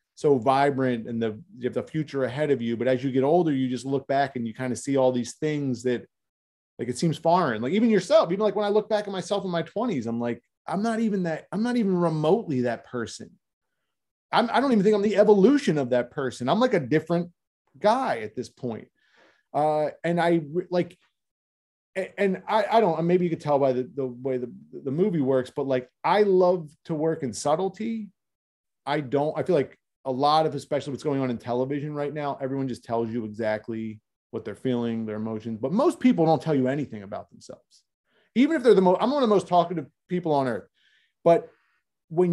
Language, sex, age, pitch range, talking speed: English, male, 30-49, 130-195 Hz, 225 wpm